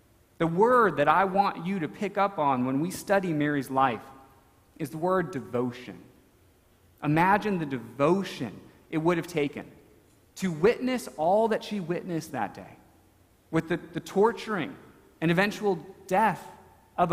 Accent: American